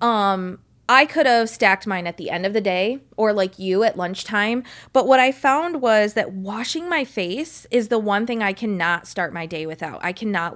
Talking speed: 215 wpm